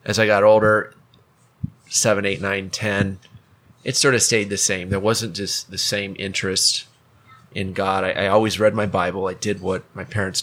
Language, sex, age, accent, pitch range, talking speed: English, male, 30-49, American, 95-120 Hz, 195 wpm